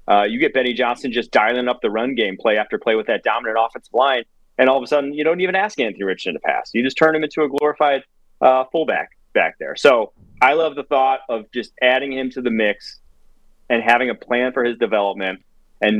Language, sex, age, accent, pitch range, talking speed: English, male, 30-49, American, 110-140 Hz, 240 wpm